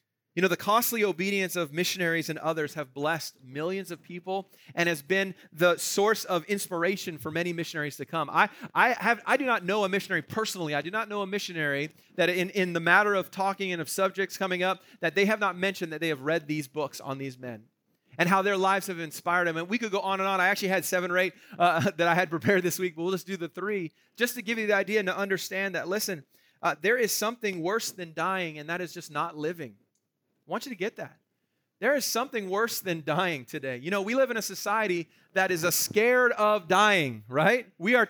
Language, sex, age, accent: English, male, 30-49, American